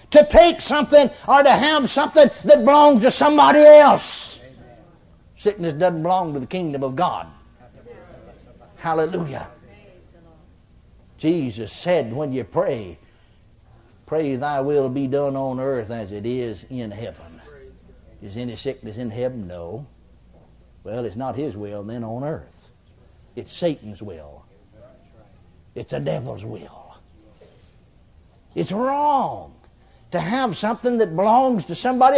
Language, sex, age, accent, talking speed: English, male, 60-79, American, 125 wpm